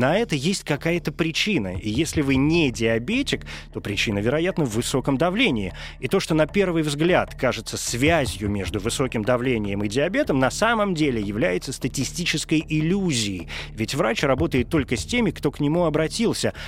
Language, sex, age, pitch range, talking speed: Russian, male, 30-49, 110-160 Hz, 160 wpm